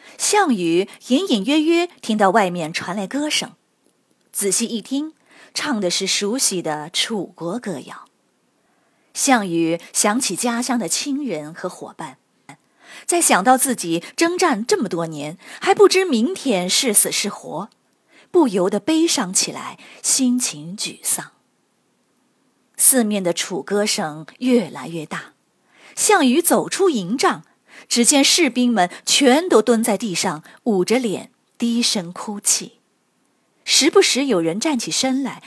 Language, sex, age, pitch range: Chinese, female, 30-49, 190-275 Hz